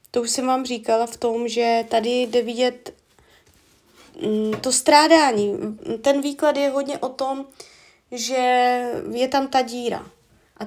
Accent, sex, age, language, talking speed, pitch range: native, female, 20-39, Czech, 140 wpm, 220-265 Hz